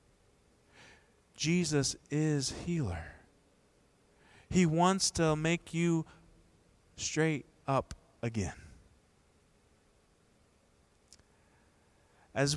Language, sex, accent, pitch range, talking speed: English, male, American, 120-165 Hz, 55 wpm